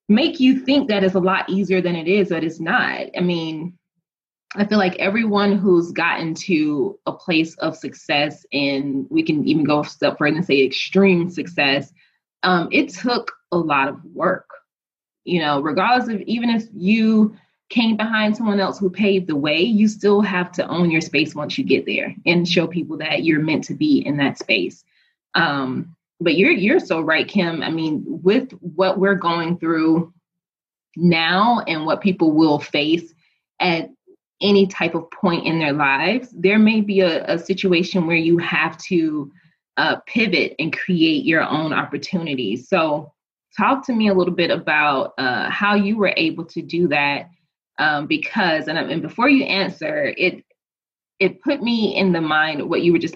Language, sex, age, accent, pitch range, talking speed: English, female, 20-39, American, 160-210 Hz, 185 wpm